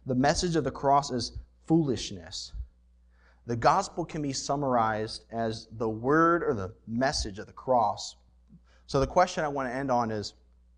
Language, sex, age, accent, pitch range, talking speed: English, male, 30-49, American, 110-155 Hz, 165 wpm